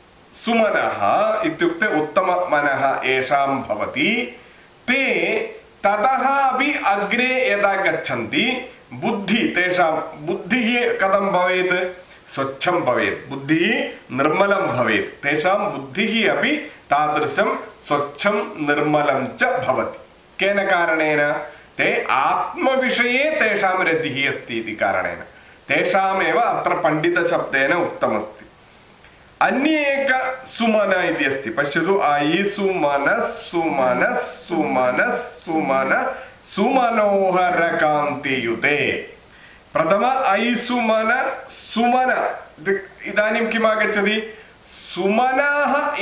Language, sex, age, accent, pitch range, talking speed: English, male, 40-59, Indian, 165-255 Hz, 75 wpm